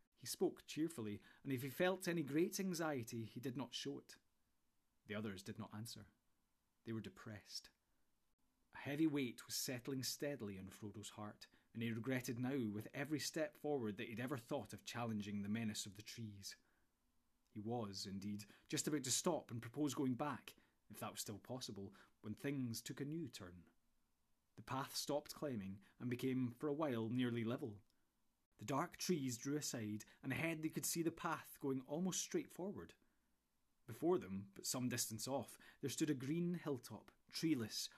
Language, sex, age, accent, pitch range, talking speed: English, male, 30-49, British, 110-145 Hz, 175 wpm